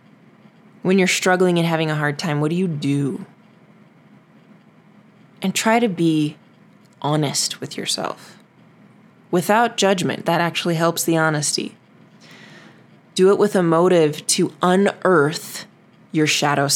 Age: 20-39